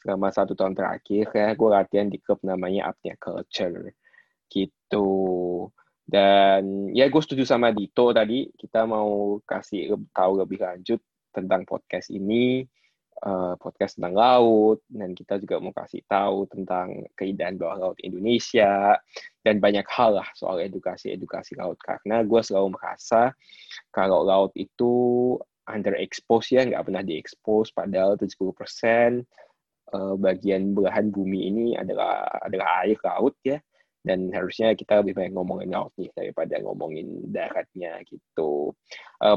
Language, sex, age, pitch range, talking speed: Indonesian, male, 20-39, 95-115 Hz, 135 wpm